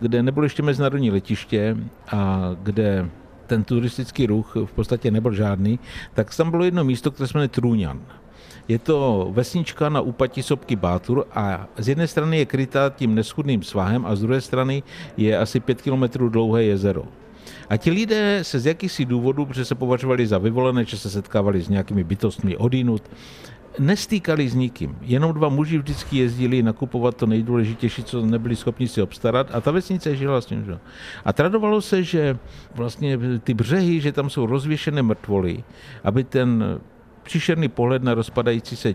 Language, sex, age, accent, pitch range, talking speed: Czech, male, 60-79, native, 115-145 Hz, 170 wpm